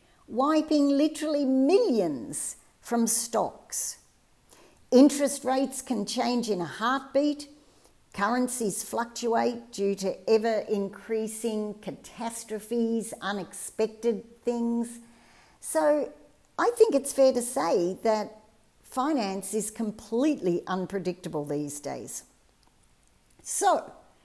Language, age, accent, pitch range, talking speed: English, 50-69, Australian, 185-255 Hz, 90 wpm